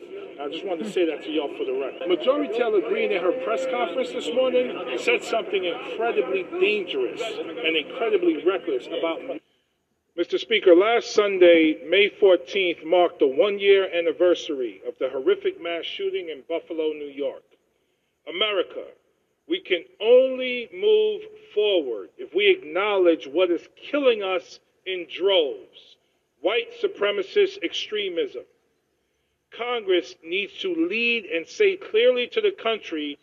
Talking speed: 135 wpm